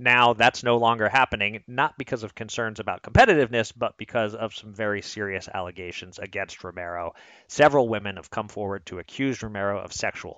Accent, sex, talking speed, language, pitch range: American, male, 175 wpm, English, 100-120 Hz